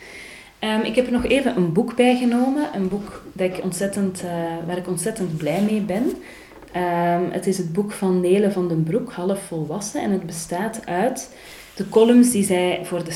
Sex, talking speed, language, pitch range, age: female, 195 wpm, Dutch, 170-200 Hz, 30-49